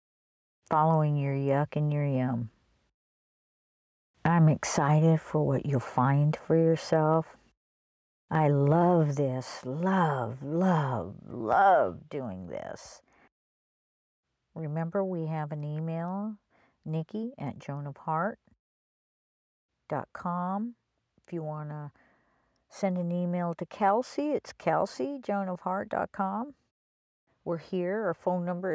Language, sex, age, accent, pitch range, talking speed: English, female, 50-69, American, 145-200 Hz, 100 wpm